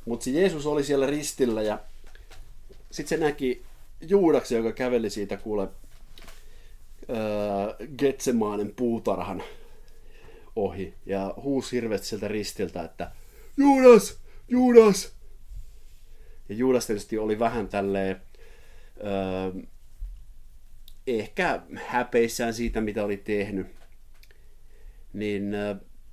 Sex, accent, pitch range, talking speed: male, native, 95-130 Hz, 85 wpm